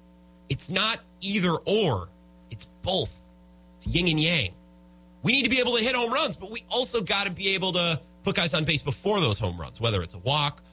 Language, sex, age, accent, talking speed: English, male, 30-49, American, 220 wpm